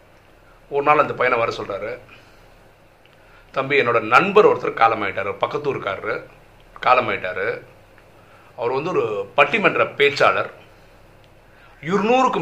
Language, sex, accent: Tamil, male, native